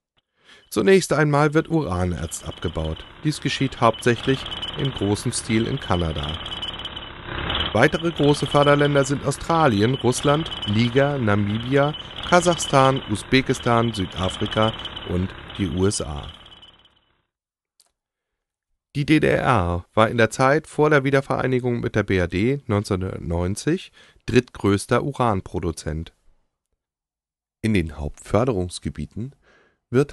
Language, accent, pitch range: German, German, 90-140 Hz